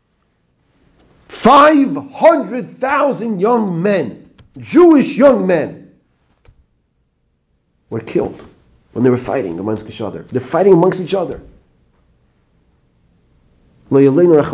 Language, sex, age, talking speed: English, male, 50-69, 85 wpm